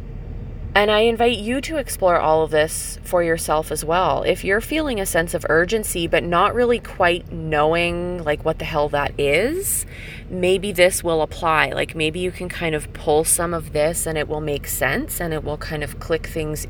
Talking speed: 205 wpm